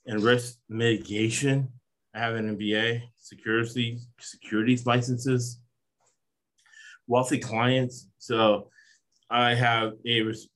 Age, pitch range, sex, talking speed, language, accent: 30-49, 110-130 Hz, male, 85 wpm, English, American